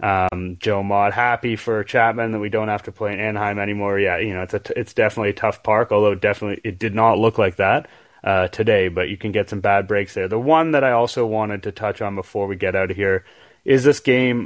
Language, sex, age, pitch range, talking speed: English, male, 30-49, 105-120 Hz, 255 wpm